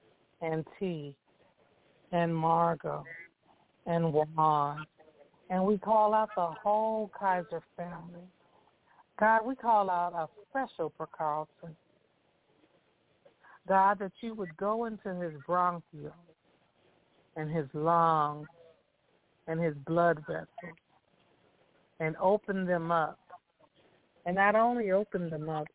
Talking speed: 105 wpm